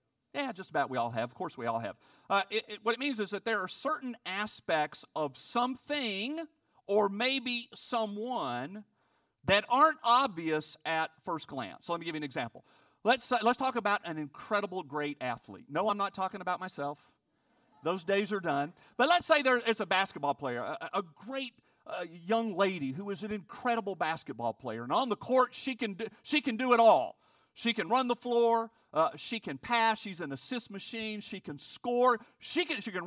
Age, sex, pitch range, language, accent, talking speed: 50-69, male, 195-265 Hz, English, American, 200 wpm